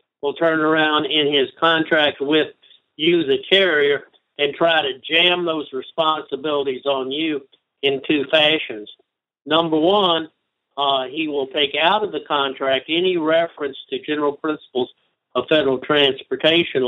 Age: 60-79